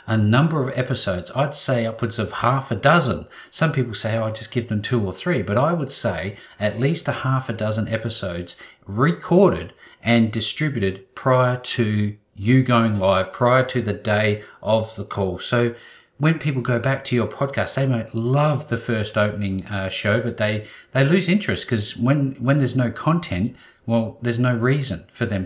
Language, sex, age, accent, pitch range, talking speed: English, male, 40-59, Australian, 105-125 Hz, 190 wpm